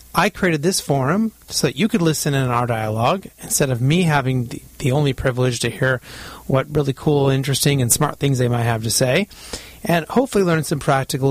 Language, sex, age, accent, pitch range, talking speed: English, male, 30-49, American, 125-155 Hz, 205 wpm